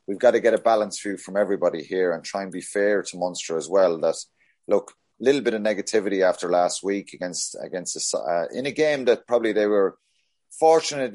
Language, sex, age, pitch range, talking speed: English, male, 30-49, 95-120 Hz, 215 wpm